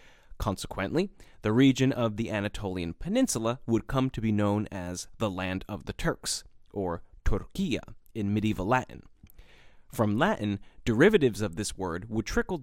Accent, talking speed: American, 145 wpm